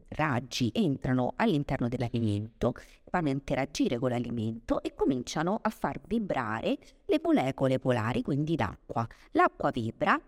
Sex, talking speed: female, 125 wpm